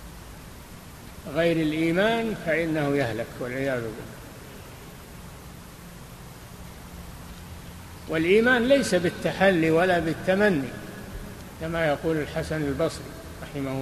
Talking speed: 70 wpm